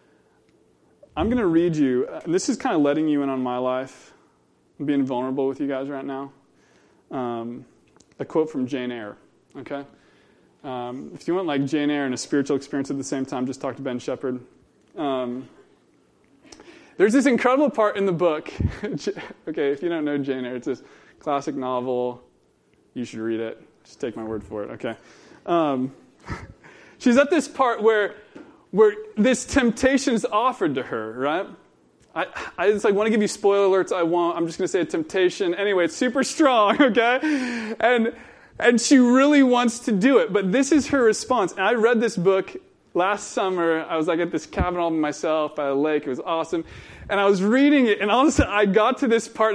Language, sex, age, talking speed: English, male, 20-39, 205 wpm